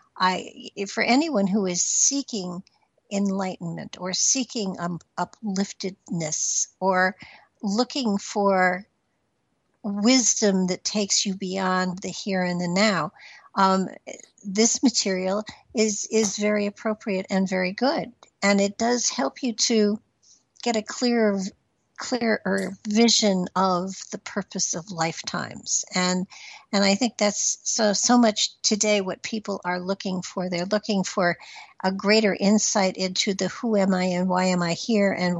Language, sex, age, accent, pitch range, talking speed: English, female, 60-79, American, 185-220 Hz, 135 wpm